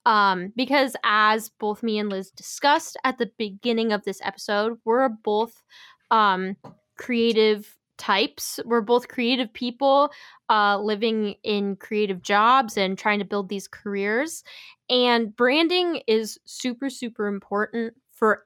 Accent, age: American, 10-29